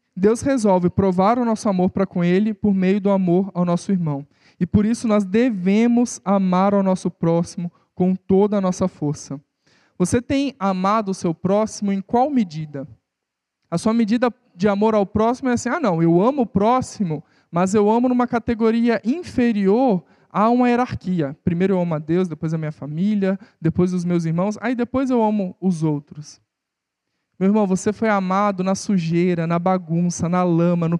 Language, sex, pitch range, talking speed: Portuguese, male, 180-245 Hz, 180 wpm